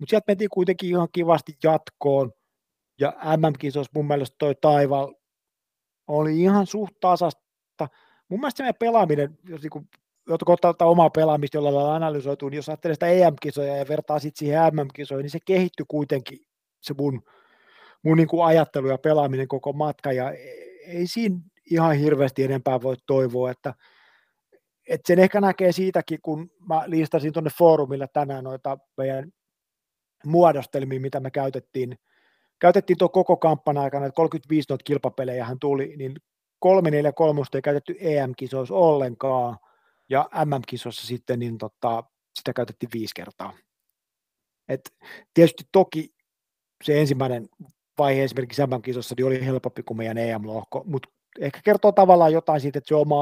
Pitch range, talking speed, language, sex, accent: 130-165 Hz, 145 wpm, Finnish, male, native